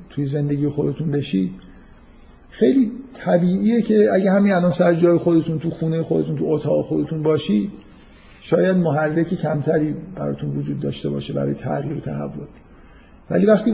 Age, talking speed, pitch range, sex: 50-69, 145 wpm, 150-180 Hz, male